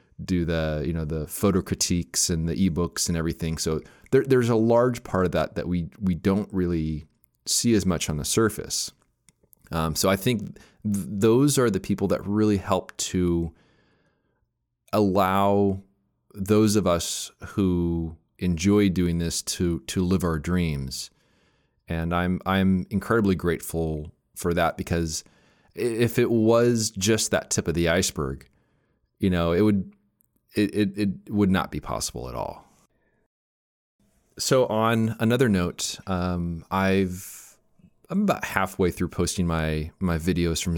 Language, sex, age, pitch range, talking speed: English, male, 30-49, 85-105 Hz, 150 wpm